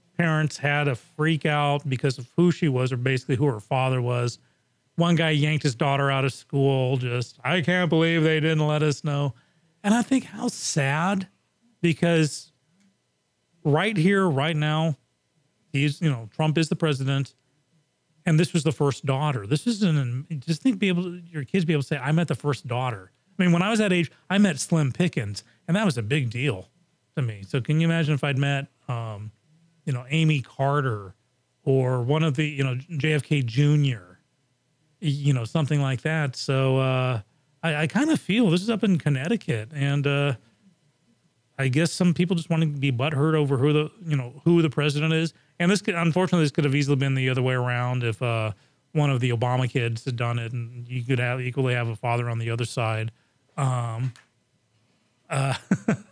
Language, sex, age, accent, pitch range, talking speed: English, male, 40-59, American, 130-165 Hz, 200 wpm